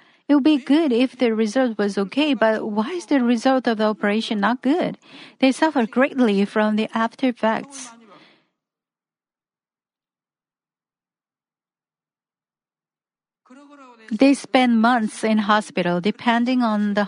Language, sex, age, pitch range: Korean, female, 40-59, 210-265 Hz